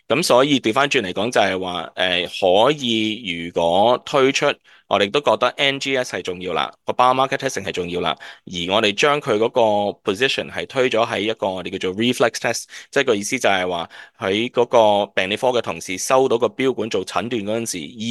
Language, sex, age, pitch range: English, male, 20-39, 100-125 Hz